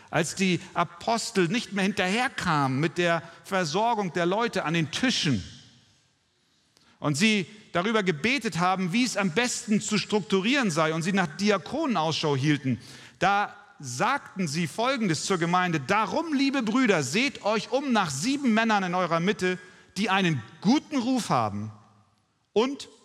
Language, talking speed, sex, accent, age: German, 145 wpm, male, German, 40-59